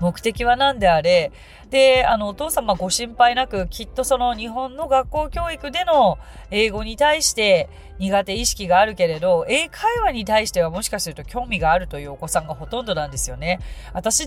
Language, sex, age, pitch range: Japanese, female, 30-49, 175-280 Hz